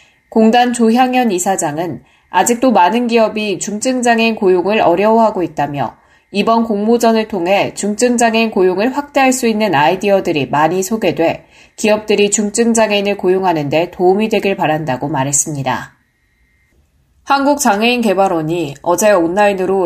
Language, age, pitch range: Korean, 10-29, 170-225 Hz